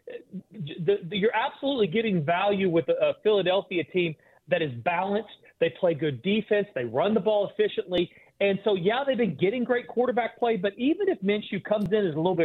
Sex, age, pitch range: male, 40-59, 170-230 Hz